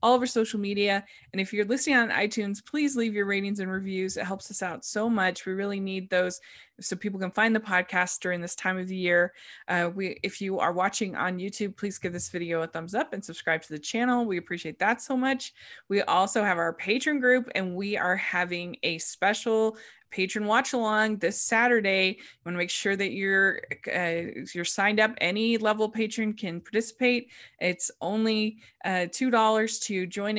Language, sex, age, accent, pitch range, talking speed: English, female, 20-39, American, 180-215 Hz, 205 wpm